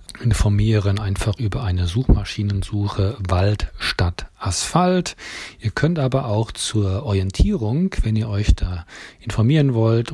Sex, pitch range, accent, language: male, 95-115 Hz, German, German